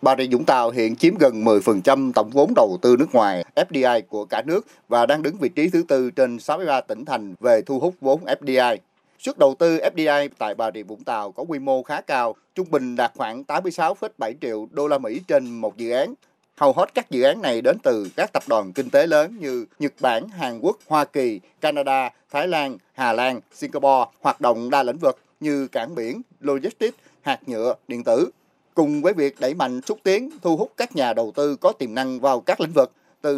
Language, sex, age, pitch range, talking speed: Vietnamese, male, 30-49, 130-175 Hz, 220 wpm